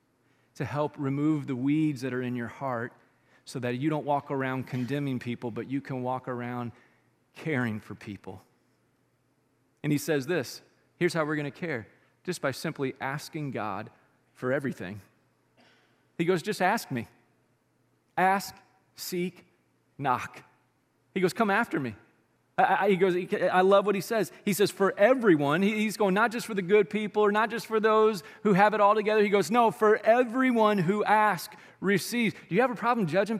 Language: English